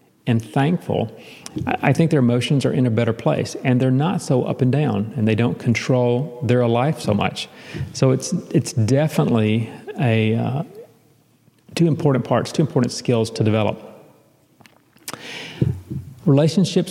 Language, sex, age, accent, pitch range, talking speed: English, male, 40-59, American, 120-150 Hz, 145 wpm